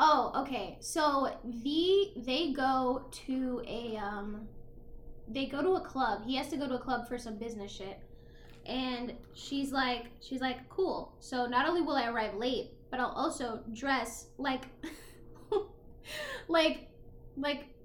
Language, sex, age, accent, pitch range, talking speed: English, female, 10-29, American, 220-290 Hz, 150 wpm